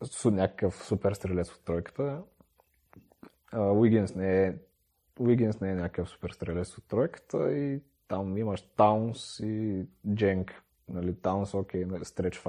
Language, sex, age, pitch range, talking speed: Bulgarian, male, 30-49, 90-120 Hz, 125 wpm